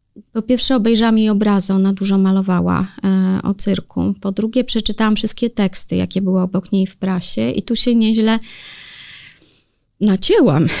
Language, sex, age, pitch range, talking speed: Polish, female, 20-39, 195-235 Hz, 150 wpm